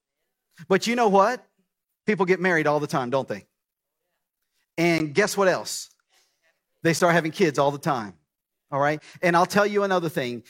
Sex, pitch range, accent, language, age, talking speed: male, 115-160 Hz, American, English, 40-59, 175 wpm